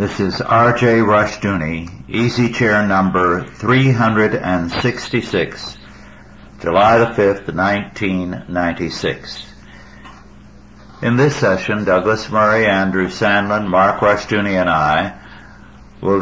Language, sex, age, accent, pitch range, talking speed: English, male, 60-79, American, 95-120 Hz, 95 wpm